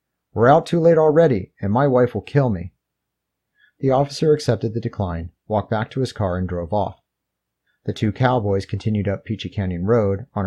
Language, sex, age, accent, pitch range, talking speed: English, male, 30-49, American, 95-125 Hz, 190 wpm